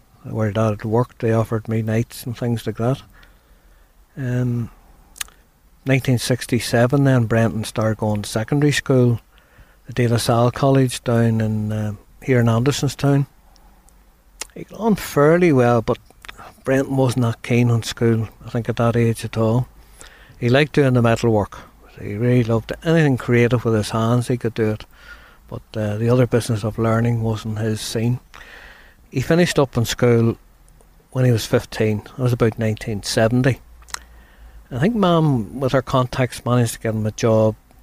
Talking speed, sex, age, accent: 165 wpm, male, 60-79, Irish